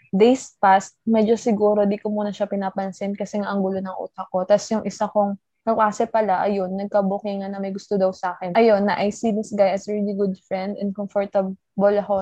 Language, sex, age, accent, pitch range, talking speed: Filipino, female, 20-39, native, 195-220 Hz, 215 wpm